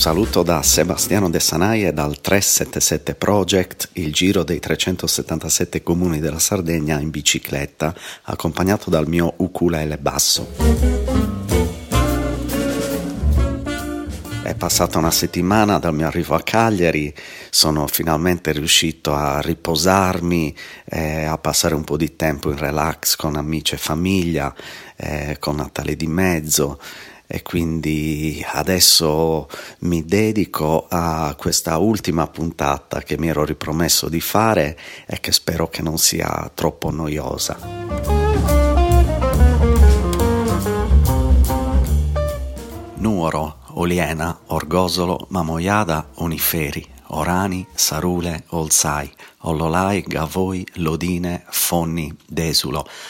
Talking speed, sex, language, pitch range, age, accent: 100 wpm, male, Italian, 75-90 Hz, 40-59, native